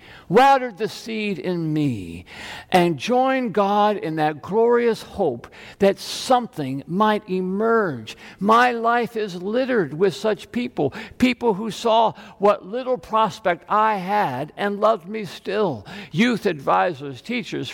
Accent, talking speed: American, 130 wpm